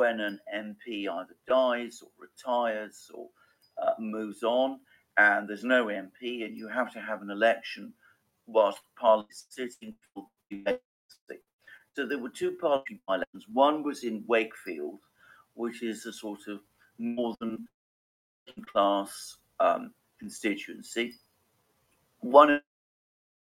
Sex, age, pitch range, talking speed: male, 50-69, 105-145 Hz, 125 wpm